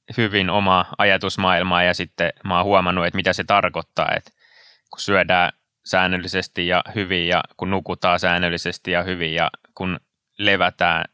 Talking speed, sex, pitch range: 145 wpm, male, 90-100 Hz